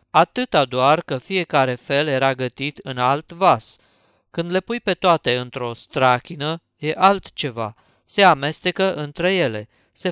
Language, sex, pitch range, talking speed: Romanian, male, 130-175 Hz, 140 wpm